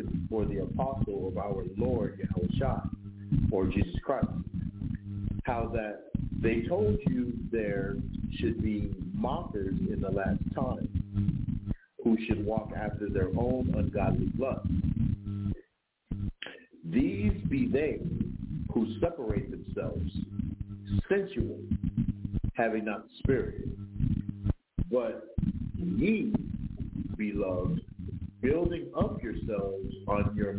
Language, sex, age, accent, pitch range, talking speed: English, male, 50-69, American, 95-110 Hz, 95 wpm